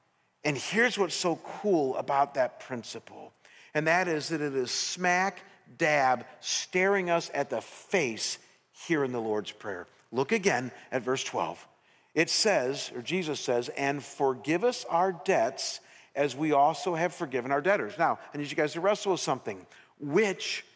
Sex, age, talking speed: male, 50-69, 170 wpm